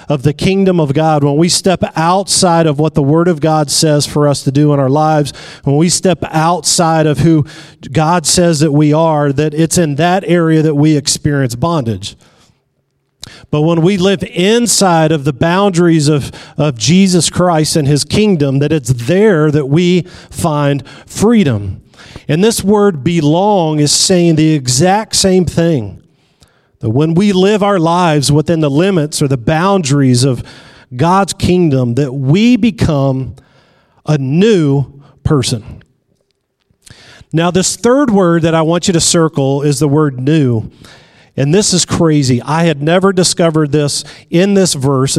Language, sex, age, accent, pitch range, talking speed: English, male, 40-59, American, 145-180 Hz, 160 wpm